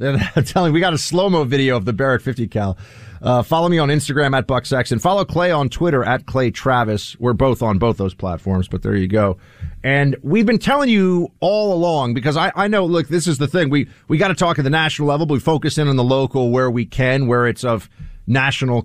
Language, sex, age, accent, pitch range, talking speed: English, male, 40-59, American, 110-160 Hz, 240 wpm